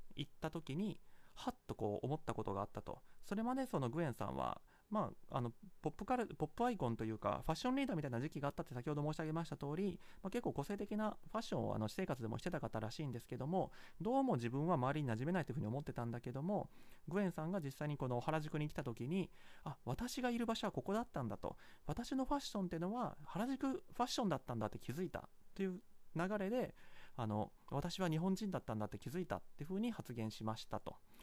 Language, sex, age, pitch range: Japanese, male, 30-49, 125-195 Hz